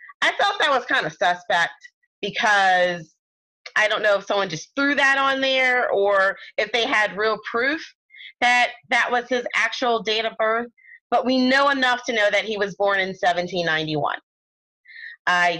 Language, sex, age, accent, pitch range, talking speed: English, female, 30-49, American, 180-245 Hz, 175 wpm